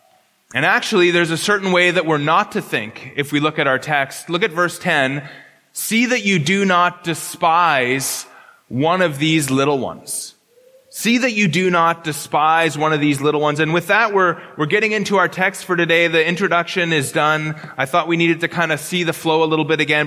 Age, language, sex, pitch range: 30-49, English, male, 155-205 Hz